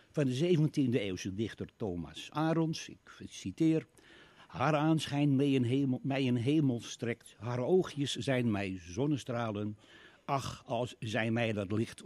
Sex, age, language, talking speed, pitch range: male, 60-79, Dutch, 130 wpm, 110-145 Hz